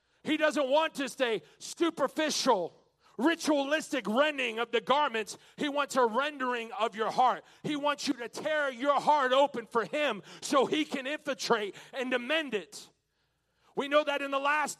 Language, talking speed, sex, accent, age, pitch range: English, 165 wpm, male, American, 40-59, 245-295 Hz